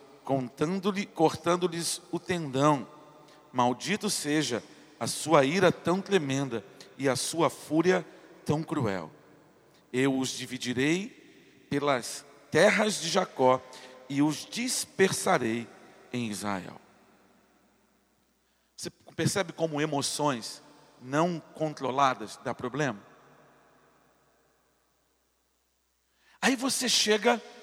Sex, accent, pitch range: male, Brazilian, 140-190 Hz